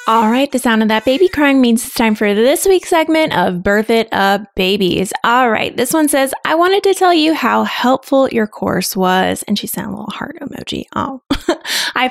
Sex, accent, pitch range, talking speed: female, American, 195-270 Hz, 220 wpm